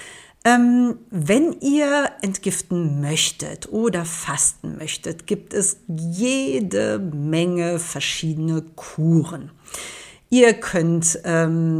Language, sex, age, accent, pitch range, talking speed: German, female, 50-69, German, 160-205 Hz, 85 wpm